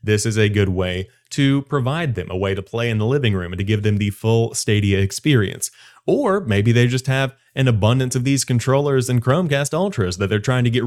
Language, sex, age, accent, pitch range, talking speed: English, male, 30-49, American, 105-130 Hz, 230 wpm